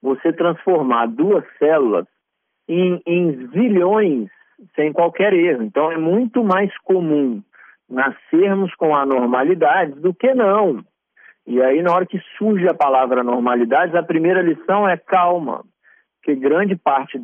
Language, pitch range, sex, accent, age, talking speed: Portuguese, 145-190 Hz, male, Brazilian, 50-69, 130 wpm